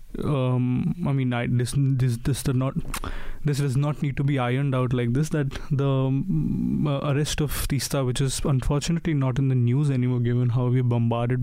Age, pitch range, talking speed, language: 20-39, 125-140 Hz, 200 wpm, English